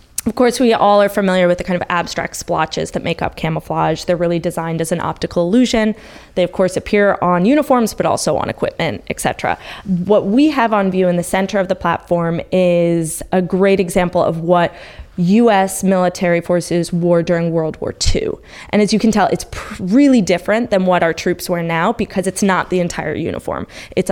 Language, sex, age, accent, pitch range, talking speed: English, female, 20-39, American, 170-205 Hz, 200 wpm